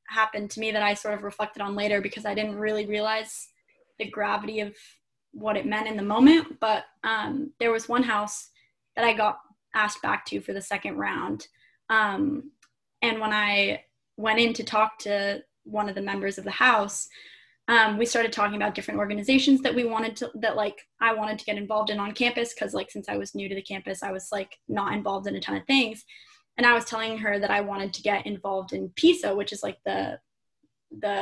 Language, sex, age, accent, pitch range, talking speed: English, female, 10-29, American, 205-245 Hz, 220 wpm